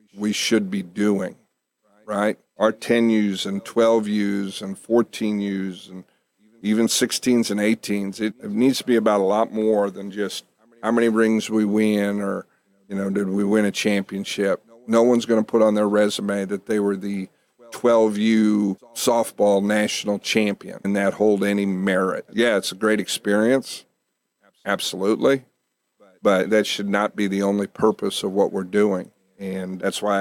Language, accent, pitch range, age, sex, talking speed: English, American, 100-115 Hz, 50-69, male, 165 wpm